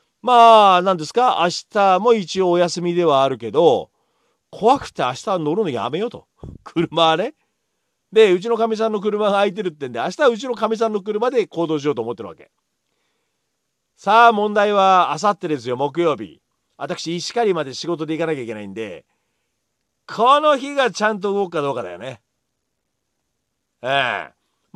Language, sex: Japanese, male